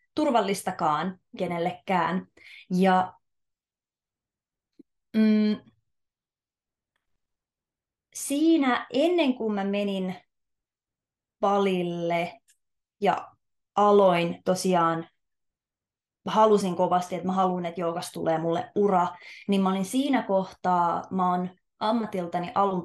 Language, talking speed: Finnish, 80 wpm